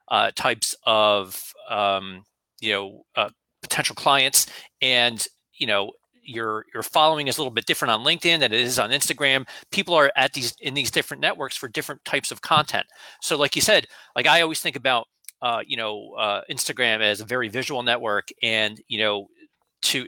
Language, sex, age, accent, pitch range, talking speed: English, male, 40-59, American, 110-140 Hz, 190 wpm